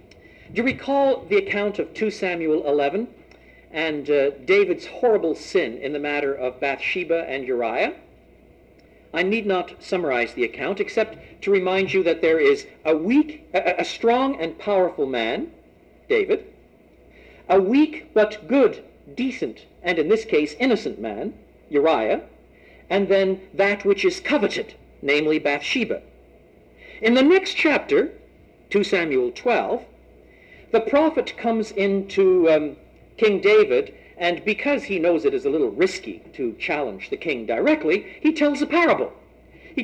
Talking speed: 140 wpm